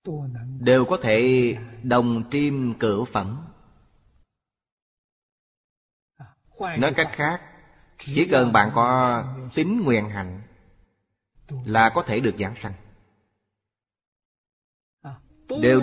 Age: 20-39